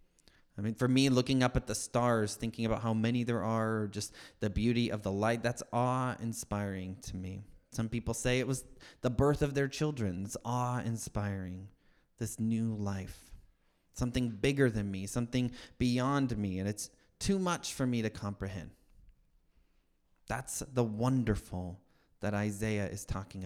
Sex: male